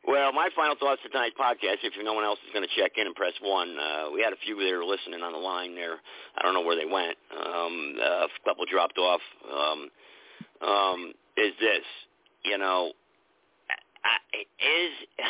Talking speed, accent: 195 wpm, American